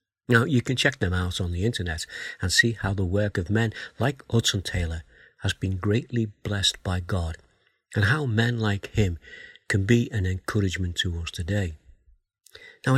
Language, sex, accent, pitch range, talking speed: English, male, British, 95-120 Hz, 175 wpm